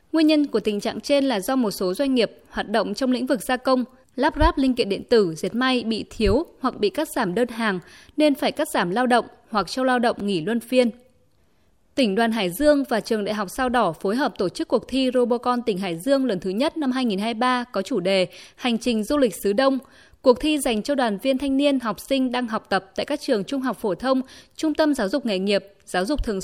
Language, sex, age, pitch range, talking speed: Vietnamese, female, 20-39, 205-275 Hz, 250 wpm